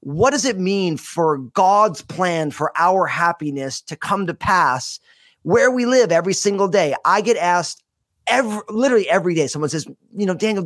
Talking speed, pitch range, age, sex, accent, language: 180 wpm, 160-210 Hz, 30-49, male, American, English